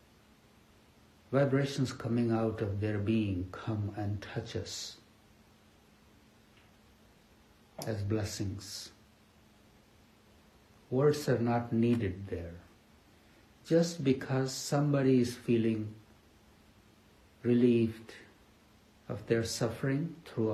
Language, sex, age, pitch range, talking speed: English, male, 60-79, 105-120 Hz, 80 wpm